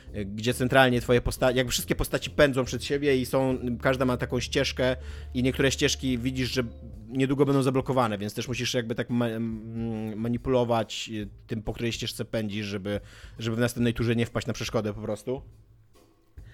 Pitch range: 110-135 Hz